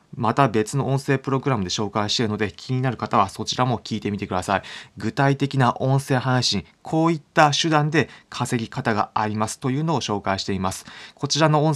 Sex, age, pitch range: male, 20-39, 105-135 Hz